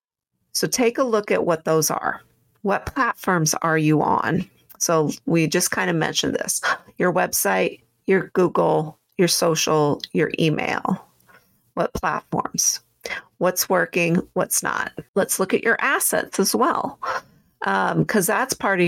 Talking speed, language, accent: 145 wpm, English, American